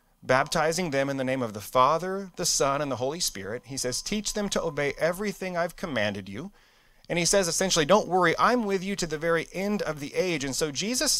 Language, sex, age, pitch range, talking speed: English, male, 30-49, 135-190 Hz, 230 wpm